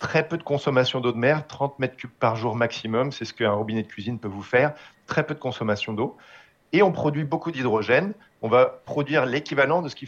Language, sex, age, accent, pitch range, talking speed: French, male, 40-59, French, 120-160 Hz, 230 wpm